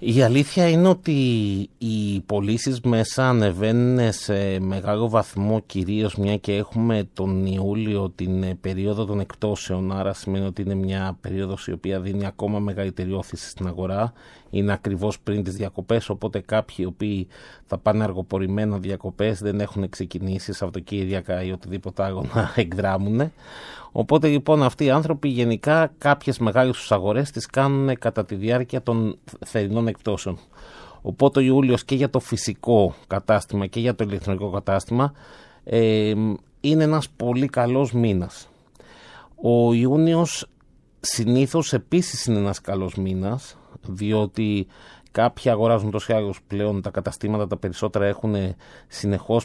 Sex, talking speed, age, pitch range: male, 140 wpm, 30-49, 95-120 Hz